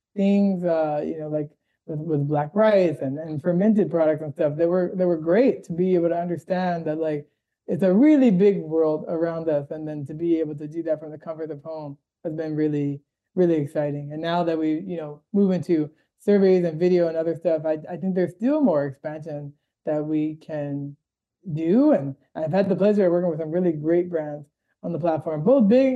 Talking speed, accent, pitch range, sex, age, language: 215 wpm, American, 150-180 Hz, male, 20-39, English